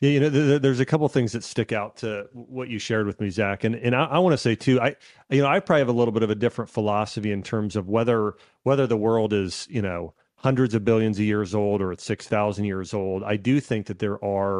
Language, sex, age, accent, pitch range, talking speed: English, male, 30-49, American, 105-125 Hz, 275 wpm